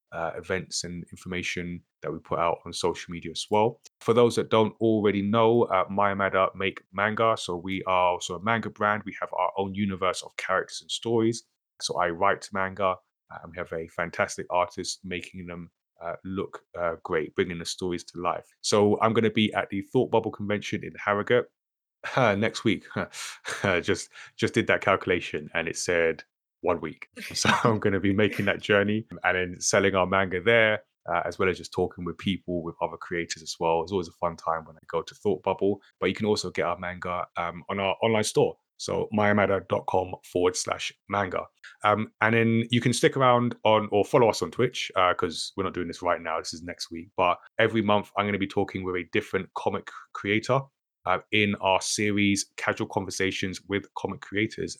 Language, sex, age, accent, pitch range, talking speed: English, male, 20-39, British, 90-105 Hz, 205 wpm